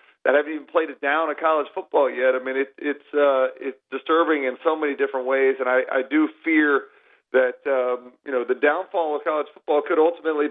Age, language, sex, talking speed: 40-59, English, male, 225 wpm